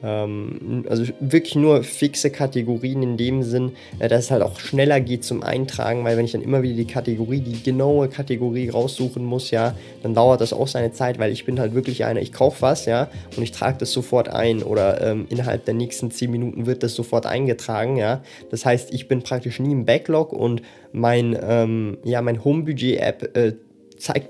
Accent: German